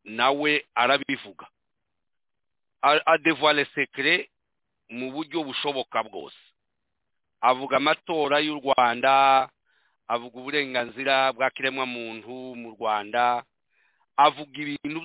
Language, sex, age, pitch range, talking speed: English, male, 50-69, 115-145 Hz, 90 wpm